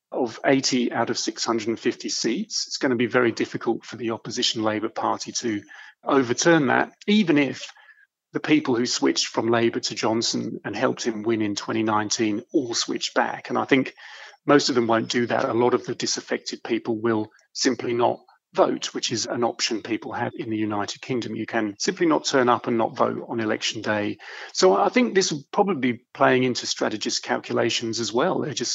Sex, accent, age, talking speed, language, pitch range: male, British, 40-59, 200 wpm, English, 120-155 Hz